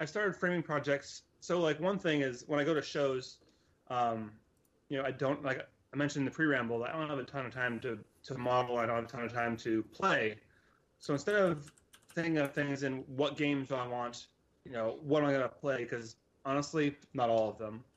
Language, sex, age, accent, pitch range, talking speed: English, male, 30-49, American, 120-150 Hz, 235 wpm